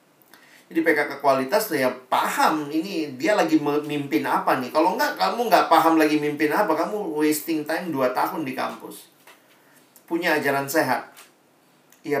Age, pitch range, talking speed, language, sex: 40-59, 130-155 Hz, 150 wpm, Indonesian, male